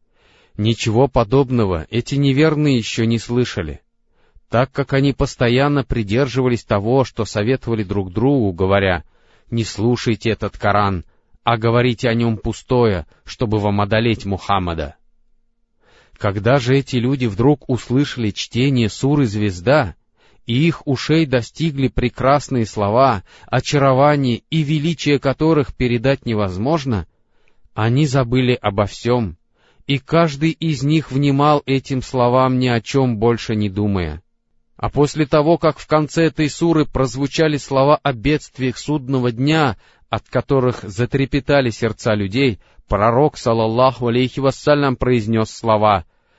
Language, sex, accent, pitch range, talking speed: Russian, male, native, 110-140 Hz, 120 wpm